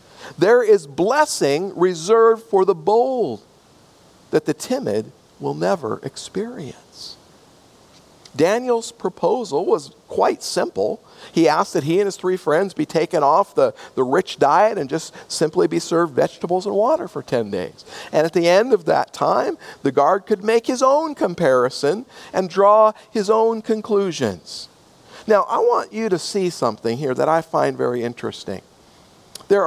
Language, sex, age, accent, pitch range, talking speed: English, male, 50-69, American, 155-225 Hz, 160 wpm